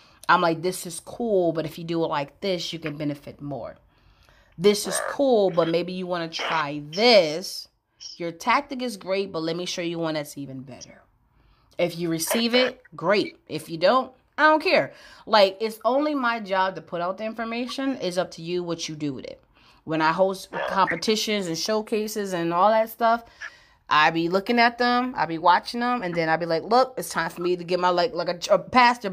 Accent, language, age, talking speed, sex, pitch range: American, English, 30-49, 220 wpm, female, 170-225 Hz